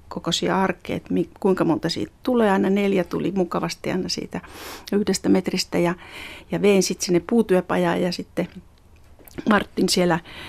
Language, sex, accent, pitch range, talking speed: Finnish, female, native, 175-220 Hz, 130 wpm